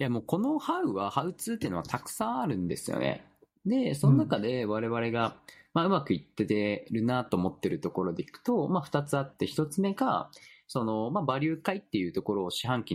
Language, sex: Japanese, male